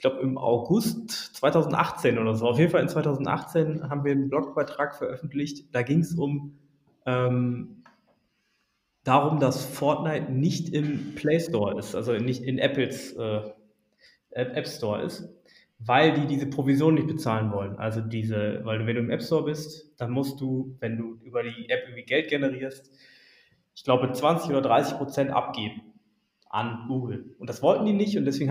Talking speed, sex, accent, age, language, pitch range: 170 wpm, male, German, 20-39, German, 120-150 Hz